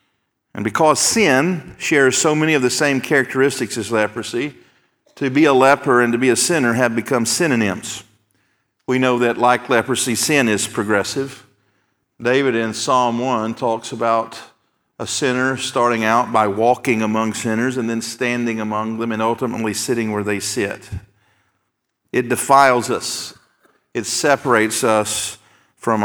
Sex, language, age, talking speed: male, English, 50-69, 145 wpm